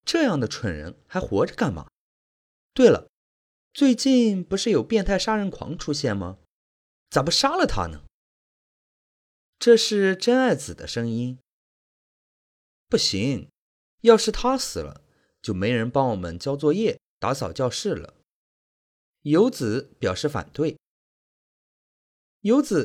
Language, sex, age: Chinese, male, 30-49